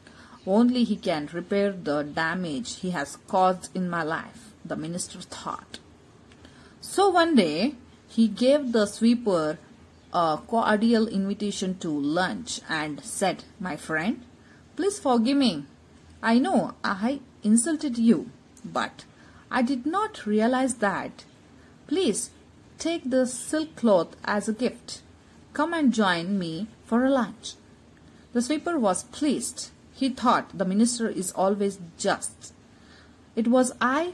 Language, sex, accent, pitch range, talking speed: English, female, Indian, 185-255 Hz, 130 wpm